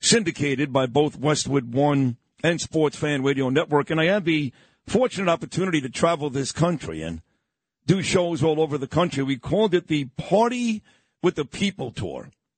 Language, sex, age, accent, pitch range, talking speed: English, male, 50-69, American, 150-185 Hz, 170 wpm